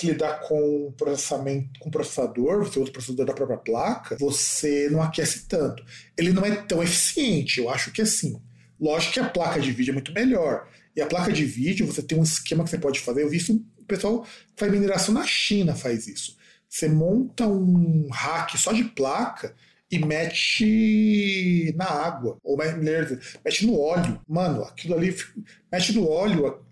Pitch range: 140-190 Hz